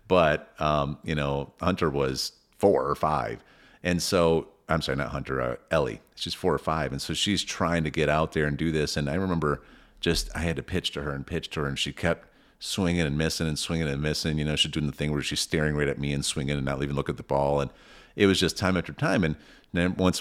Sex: male